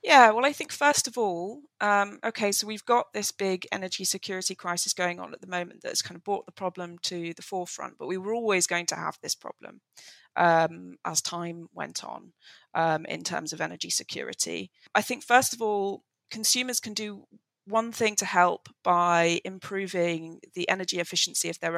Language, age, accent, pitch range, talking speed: English, 20-39, British, 175-200 Hz, 195 wpm